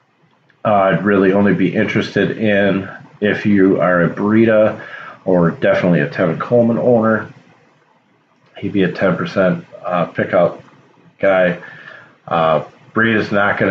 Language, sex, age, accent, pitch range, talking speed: English, male, 40-59, American, 85-100 Hz, 135 wpm